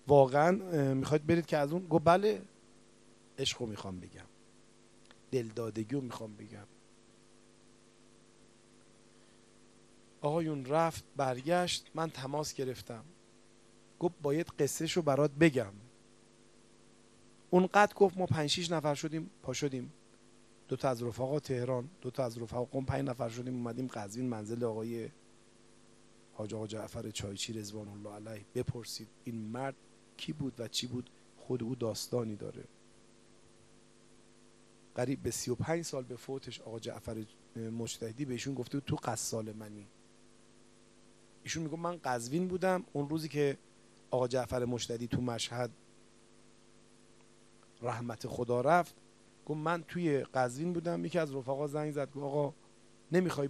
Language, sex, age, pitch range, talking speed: Persian, male, 40-59, 115-140 Hz, 125 wpm